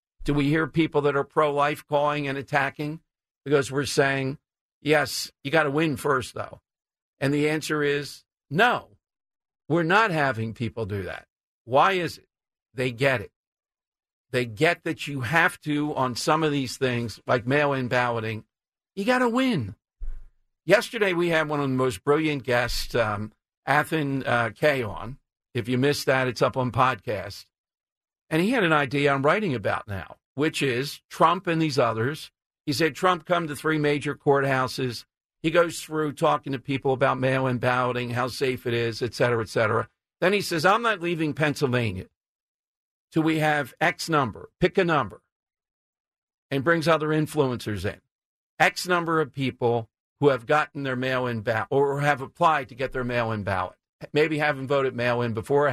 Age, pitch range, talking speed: 50-69, 125-155 Hz, 170 wpm